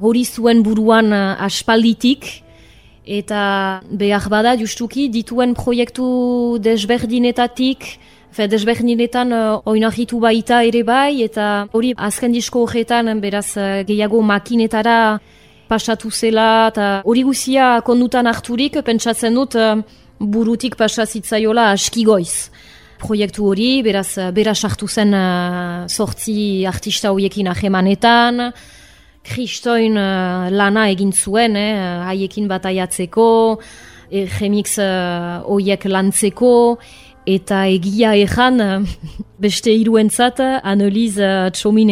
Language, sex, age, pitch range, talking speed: French, female, 20-39, 195-230 Hz, 105 wpm